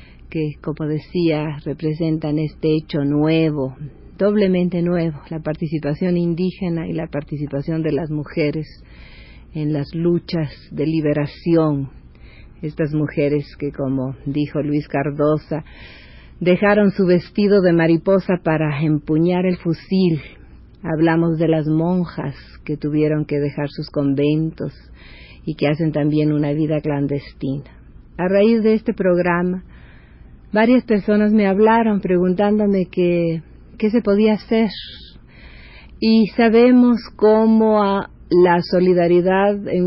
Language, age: Spanish, 50-69